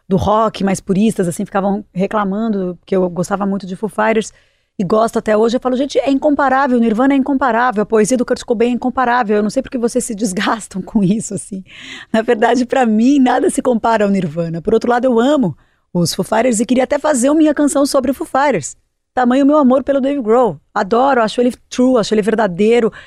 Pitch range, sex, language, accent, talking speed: 210-260 Hz, female, Portuguese, Brazilian, 220 wpm